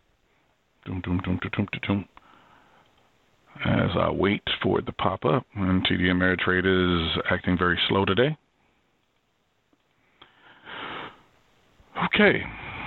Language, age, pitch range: English, 40-59, 90-110 Hz